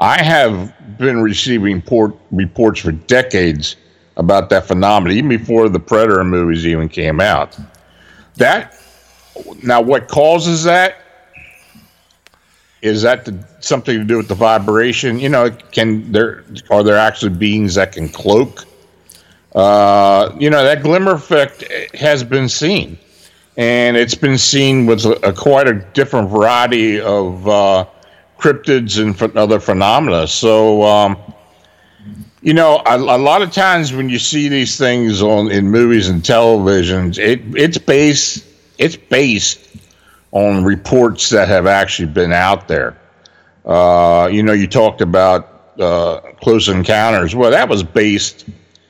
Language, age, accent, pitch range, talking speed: English, 50-69, American, 95-125 Hz, 140 wpm